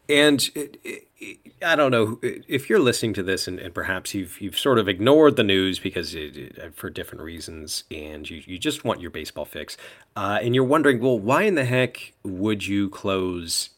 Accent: American